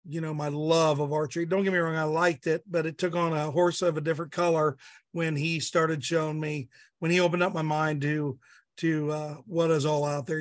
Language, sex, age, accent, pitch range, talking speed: English, male, 50-69, American, 155-175 Hz, 240 wpm